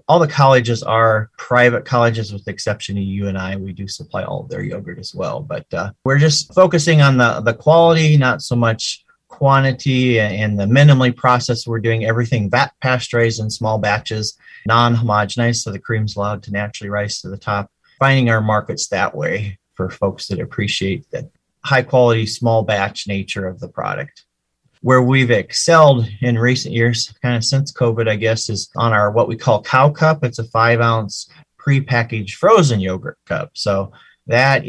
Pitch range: 105-130 Hz